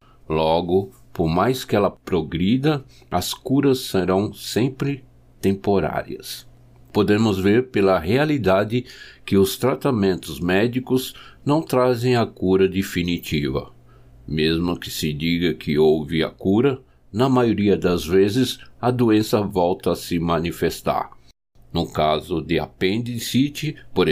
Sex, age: male, 60-79